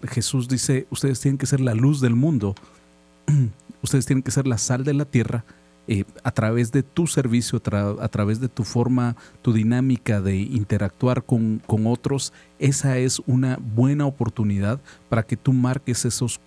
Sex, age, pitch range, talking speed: male, 40-59, 105-135 Hz, 175 wpm